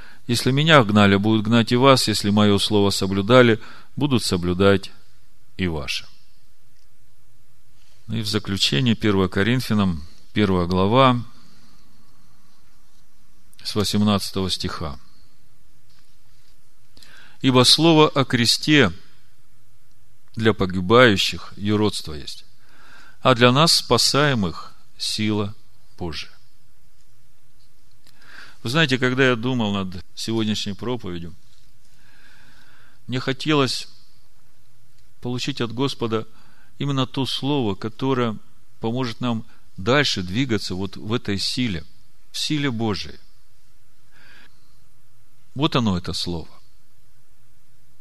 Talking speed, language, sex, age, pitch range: 90 wpm, Russian, male, 40-59, 105-125 Hz